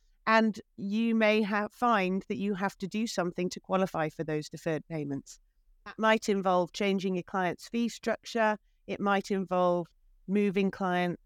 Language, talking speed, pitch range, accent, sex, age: English, 160 wpm, 175-215 Hz, British, female, 40-59